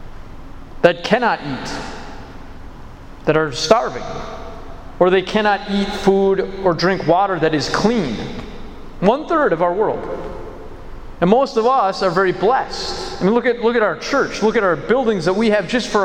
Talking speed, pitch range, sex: 170 wpm, 165-220 Hz, male